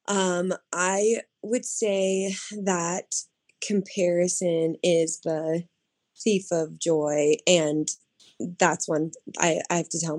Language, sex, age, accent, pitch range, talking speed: English, female, 20-39, American, 165-195 Hz, 110 wpm